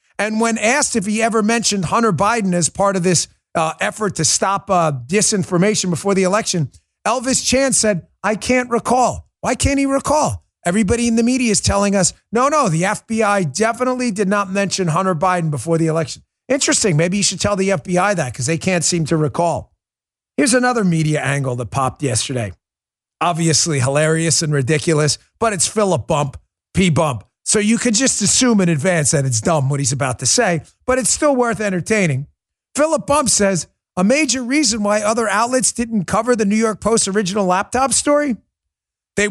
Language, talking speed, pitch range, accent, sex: English, 185 wpm, 170-245 Hz, American, male